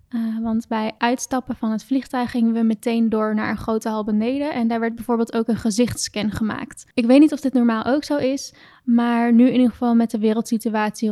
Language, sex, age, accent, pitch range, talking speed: Dutch, female, 10-29, Dutch, 215-245 Hz, 220 wpm